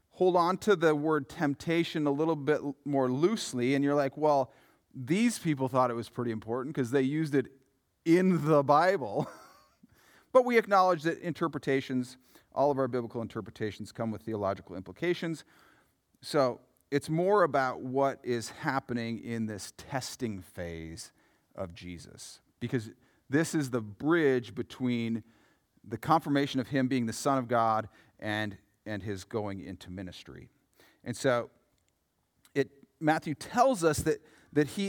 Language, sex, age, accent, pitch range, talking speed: English, male, 40-59, American, 120-170 Hz, 150 wpm